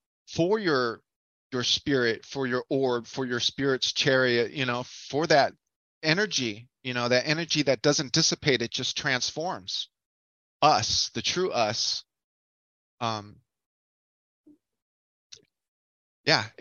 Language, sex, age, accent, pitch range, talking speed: English, male, 30-49, American, 125-160 Hz, 115 wpm